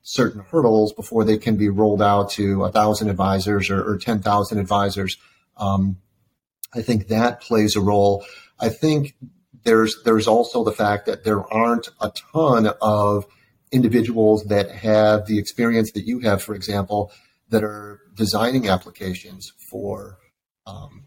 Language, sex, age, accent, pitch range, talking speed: English, male, 40-59, American, 100-115 Hz, 150 wpm